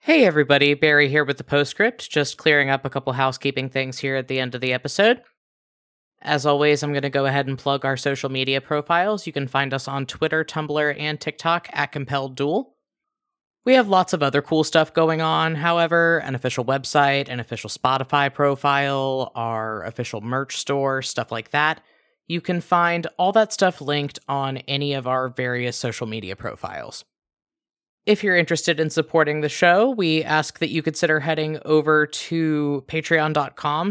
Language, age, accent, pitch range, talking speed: English, 20-39, American, 140-175 Hz, 175 wpm